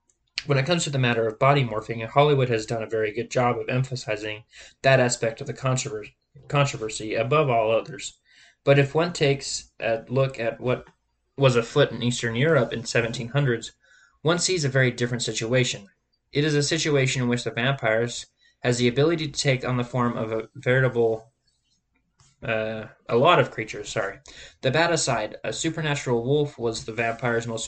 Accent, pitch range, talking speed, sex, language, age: American, 115-140 Hz, 180 wpm, male, English, 20-39